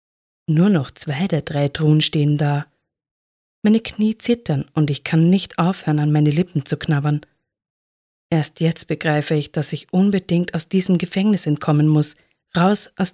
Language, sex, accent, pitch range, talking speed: English, female, German, 150-180 Hz, 160 wpm